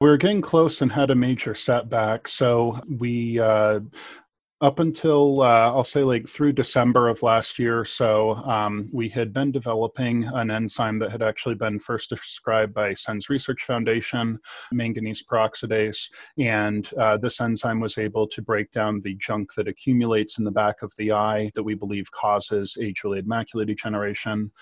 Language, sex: English, male